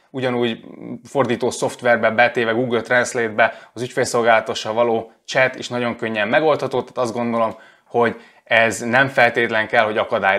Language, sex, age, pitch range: Hungarian, male, 20-39, 115-130 Hz